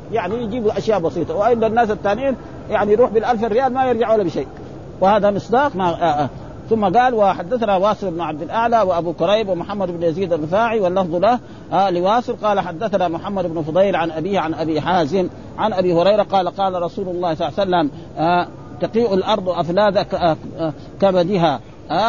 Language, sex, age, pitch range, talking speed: Arabic, male, 50-69, 175-230 Hz, 180 wpm